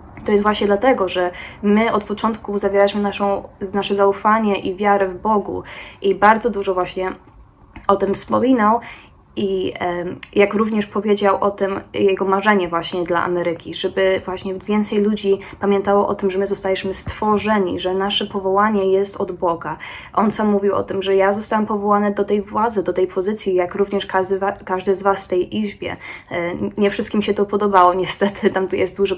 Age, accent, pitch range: 20-39, native, 180-205 Hz